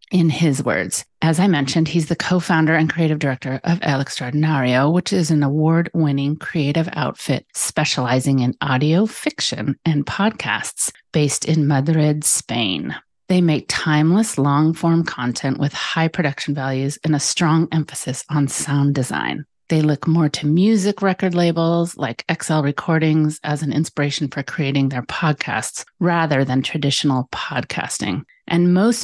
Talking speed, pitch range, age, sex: 145 wpm, 140-165 Hz, 30-49, female